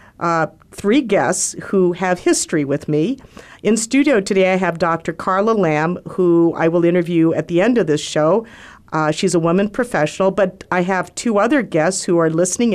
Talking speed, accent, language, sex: 190 wpm, American, English, female